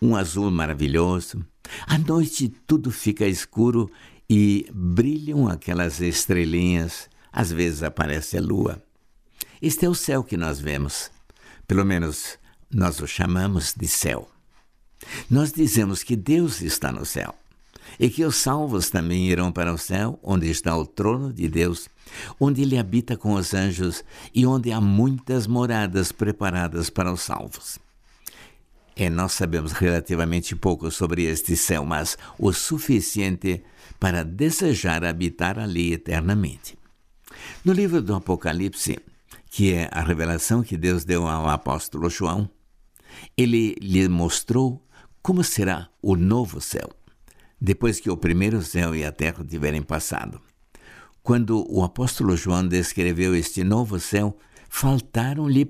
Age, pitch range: 60-79, 85-120 Hz